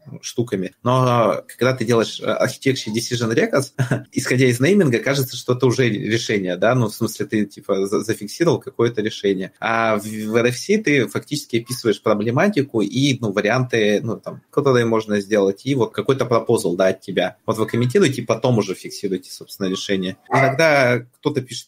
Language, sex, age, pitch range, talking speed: Russian, male, 30-49, 115-140 Hz, 160 wpm